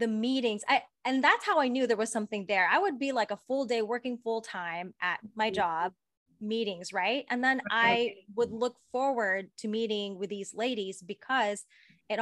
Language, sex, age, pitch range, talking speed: English, female, 20-39, 195-235 Hz, 195 wpm